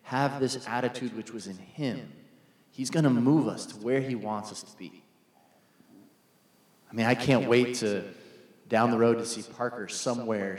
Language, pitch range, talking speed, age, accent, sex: English, 100-120 Hz, 180 wpm, 30-49, American, male